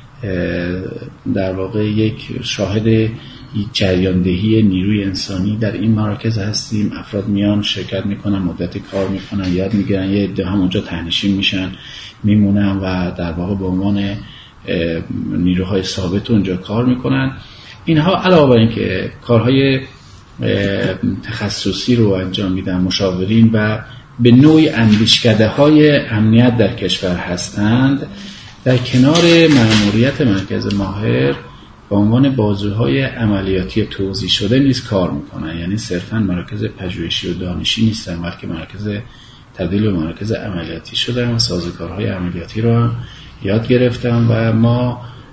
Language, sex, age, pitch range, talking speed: Persian, male, 40-59, 95-120 Hz, 125 wpm